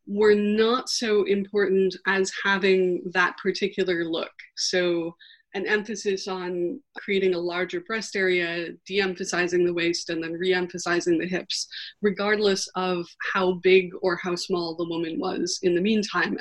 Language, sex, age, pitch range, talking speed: English, female, 20-39, 180-210 Hz, 145 wpm